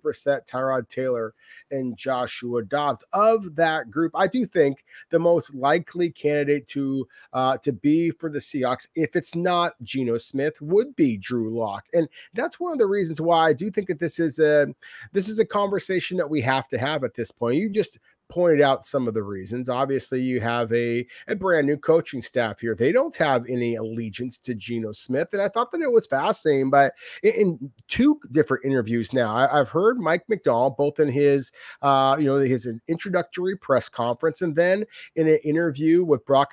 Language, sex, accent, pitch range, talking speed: English, male, American, 130-175 Hz, 190 wpm